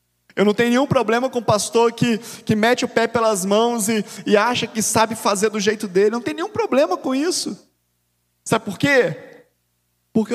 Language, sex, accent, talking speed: Portuguese, male, Brazilian, 205 wpm